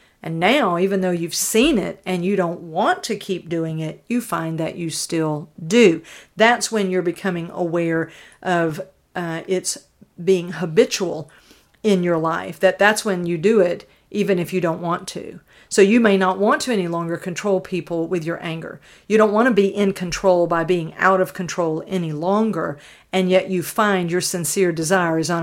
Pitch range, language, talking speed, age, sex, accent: 170-195 Hz, English, 195 wpm, 50-69, female, American